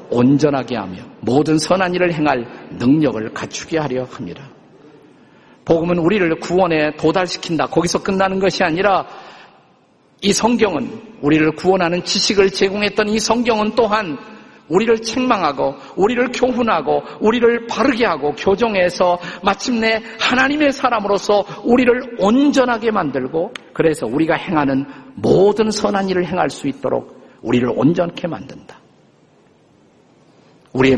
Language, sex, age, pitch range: Korean, male, 50-69, 160-225 Hz